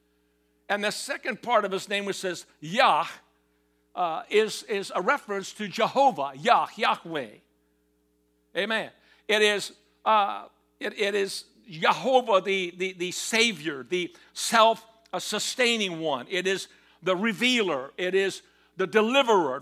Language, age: English, 60-79